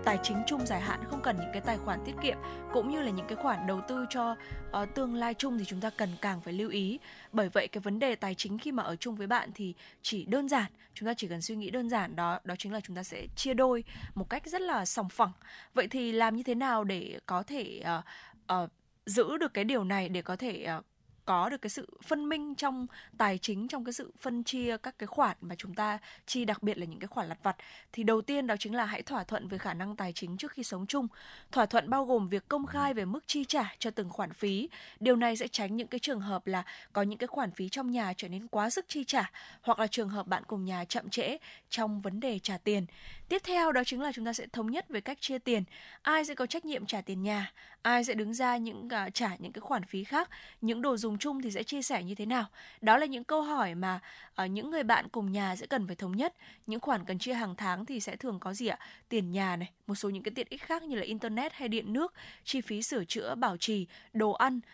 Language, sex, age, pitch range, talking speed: Vietnamese, female, 20-39, 200-255 Hz, 265 wpm